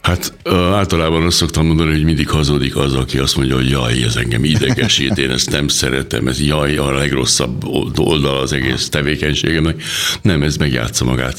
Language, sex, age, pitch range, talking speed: Hungarian, male, 60-79, 65-80 Hz, 175 wpm